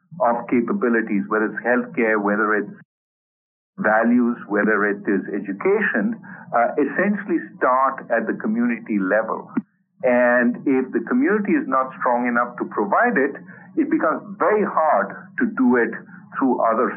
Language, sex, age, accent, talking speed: English, male, 50-69, Indian, 140 wpm